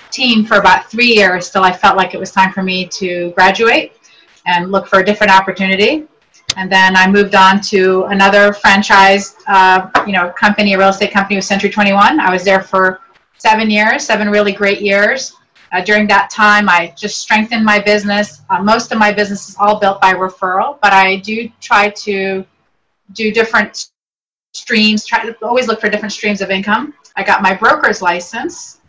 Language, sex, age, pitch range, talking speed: English, female, 30-49, 195-220 Hz, 190 wpm